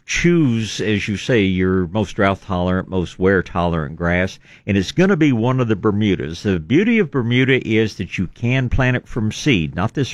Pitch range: 90-115 Hz